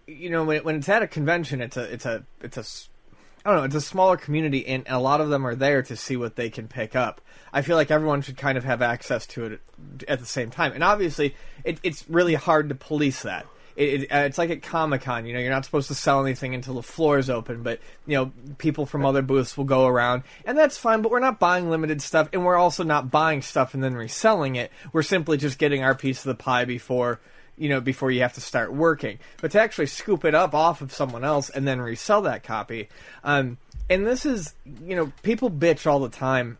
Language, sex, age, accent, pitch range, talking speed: English, male, 20-39, American, 130-170 Hz, 250 wpm